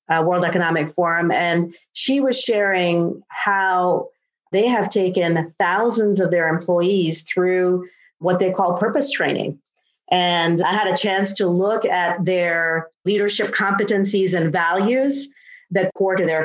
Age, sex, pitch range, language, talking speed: 40-59, female, 175-205 Hz, English, 140 wpm